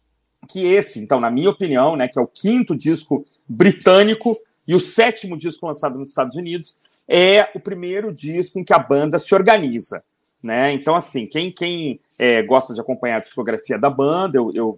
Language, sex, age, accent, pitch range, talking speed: Portuguese, male, 40-59, Brazilian, 140-215 Hz, 185 wpm